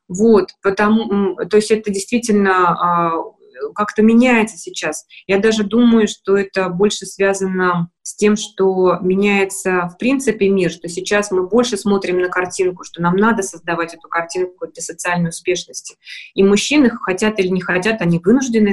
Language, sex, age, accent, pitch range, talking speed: Russian, female, 20-39, native, 180-220 Hz, 155 wpm